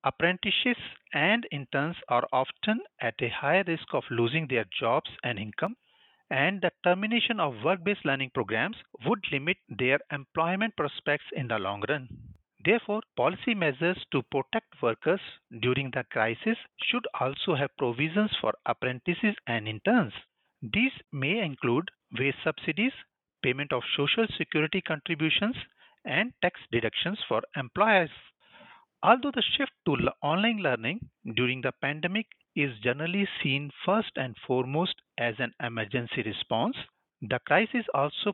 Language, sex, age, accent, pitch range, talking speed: English, male, 40-59, Indian, 125-195 Hz, 135 wpm